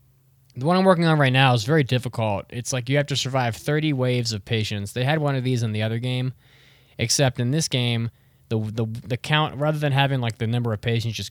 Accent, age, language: American, 20-39, English